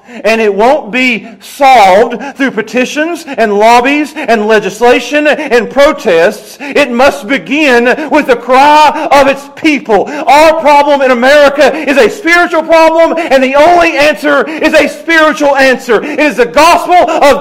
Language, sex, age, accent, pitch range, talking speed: English, male, 40-59, American, 260-315 Hz, 150 wpm